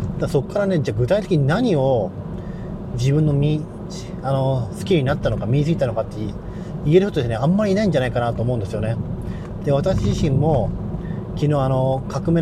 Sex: male